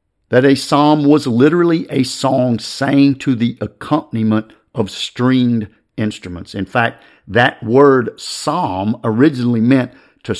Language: English